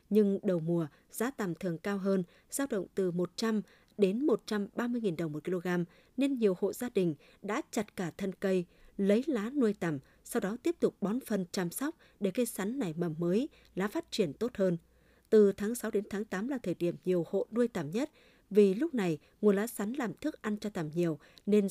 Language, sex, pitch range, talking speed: Vietnamese, female, 180-225 Hz, 215 wpm